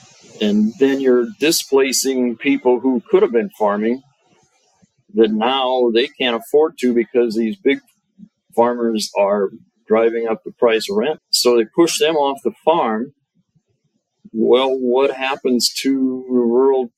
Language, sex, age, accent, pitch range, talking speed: English, male, 40-59, American, 115-160 Hz, 140 wpm